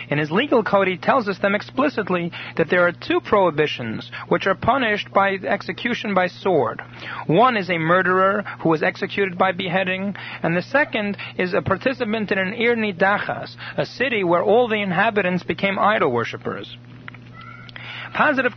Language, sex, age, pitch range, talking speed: English, male, 40-59, 165-215 Hz, 160 wpm